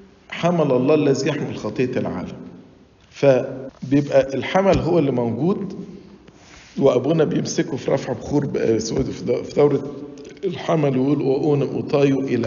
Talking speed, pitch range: 115 wpm, 130-185 Hz